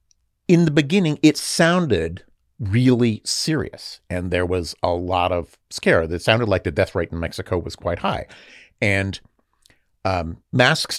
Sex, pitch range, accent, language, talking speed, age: male, 90-120 Hz, American, English, 155 wpm, 50-69